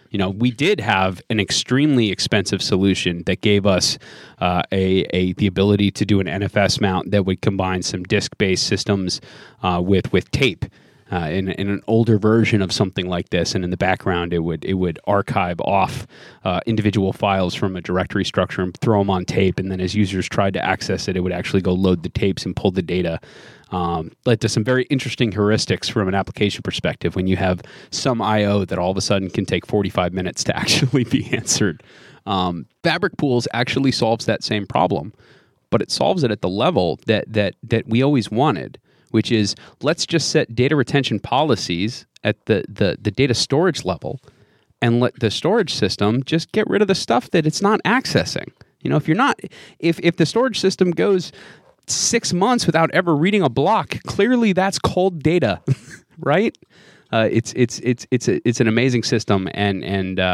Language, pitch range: English, 95-125 Hz